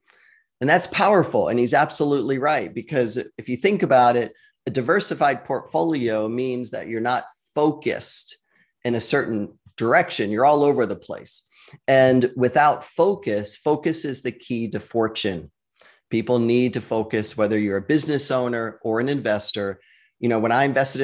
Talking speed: 160 wpm